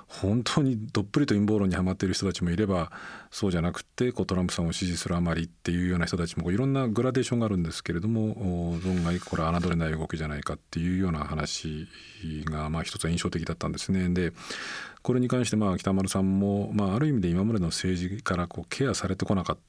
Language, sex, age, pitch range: Japanese, male, 40-59, 85-100 Hz